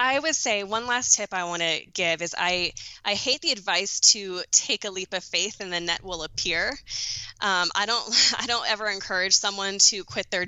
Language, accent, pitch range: English, American, 170-200 Hz